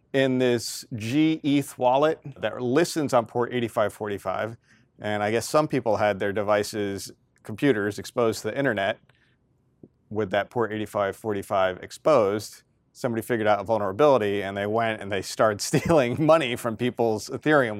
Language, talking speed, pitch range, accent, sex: English, 145 wpm, 105-135 Hz, American, male